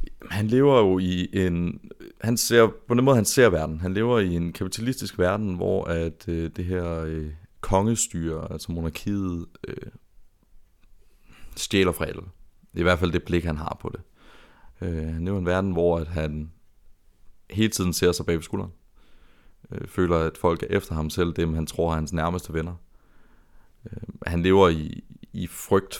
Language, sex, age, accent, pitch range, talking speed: Danish, male, 30-49, native, 80-95 Hz, 175 wpm